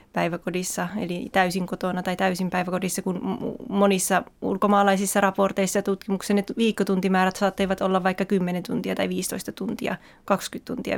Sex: female